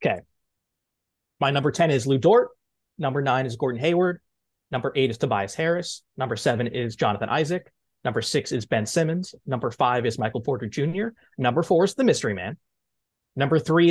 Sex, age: male, 20-39